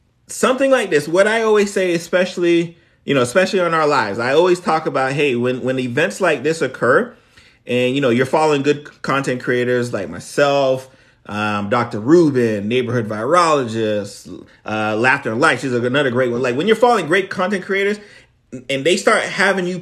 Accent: American